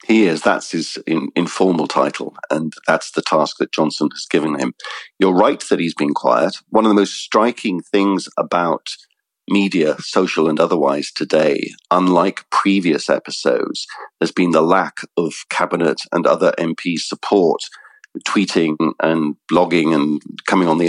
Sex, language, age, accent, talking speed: male, English, 50-69, British, 155 wpm